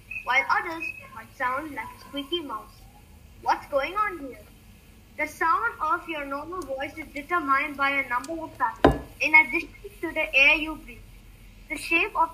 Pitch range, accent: 275-335 Hz, Indian